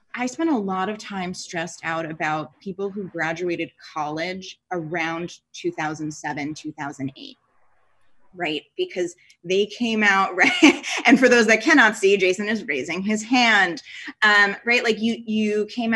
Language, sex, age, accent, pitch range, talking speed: English, female, 20-39, American, 175-235 Hz, 145 wpm